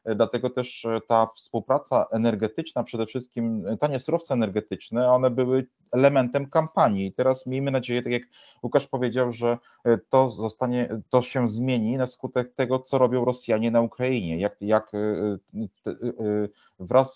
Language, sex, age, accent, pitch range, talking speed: Polish, male, 30-49, native, 110-130 Hz, 135 wpm